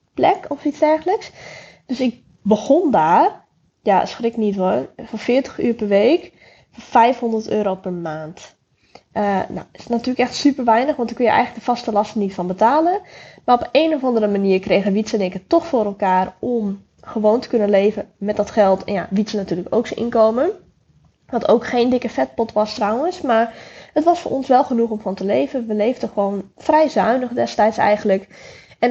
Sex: female